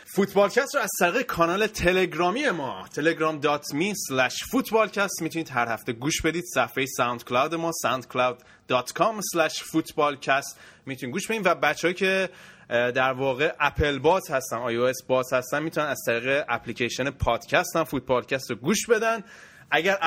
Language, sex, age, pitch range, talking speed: Persian, male, 20-39, 130-175 Hz, 130 wpm